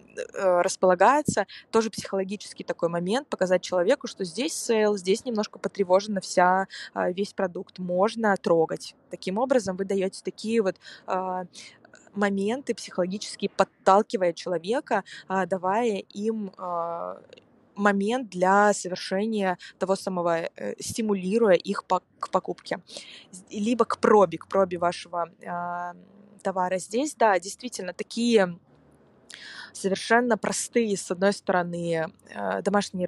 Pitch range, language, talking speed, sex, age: 185-215 Hz, Russian, 100 wpm, female, 20-39